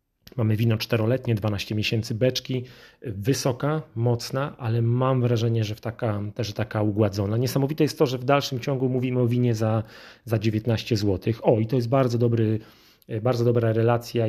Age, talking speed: 30-49, 155 wpm